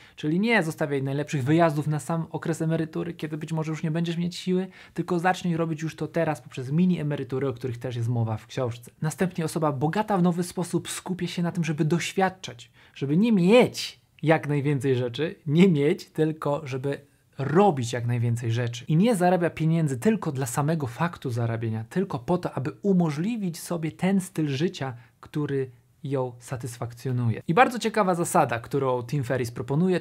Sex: male